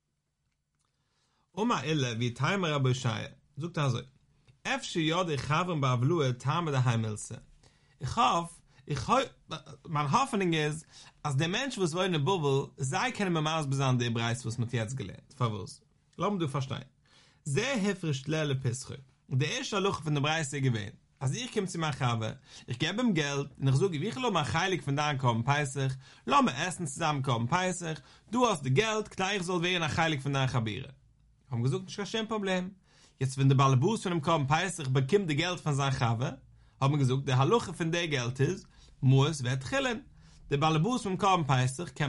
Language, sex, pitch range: English, male, 130-175 Hz